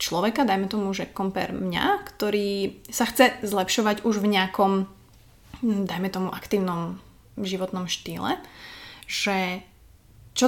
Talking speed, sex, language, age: 115 wpm, female, Slovak, 20-39